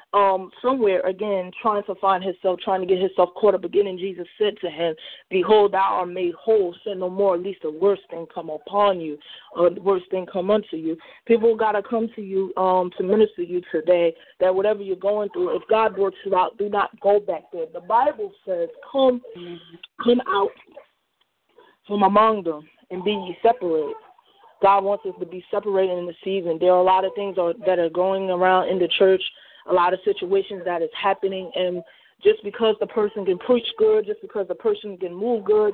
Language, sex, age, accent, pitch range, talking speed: English, female, 20-39, American, 185-225 Hz, 215 wpm